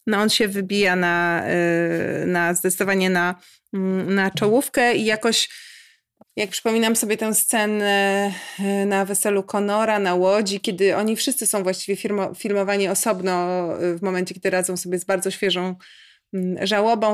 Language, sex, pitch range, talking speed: Polish, female, 195-220 Hz, 135 wpm